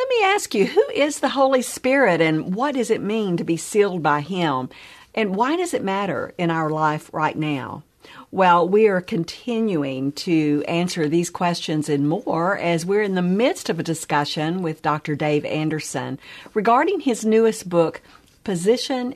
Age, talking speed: 50-69, 175 wpm